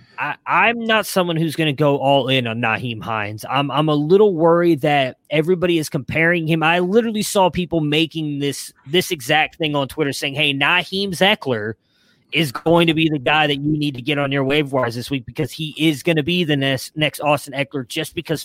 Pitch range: 135-165 Hz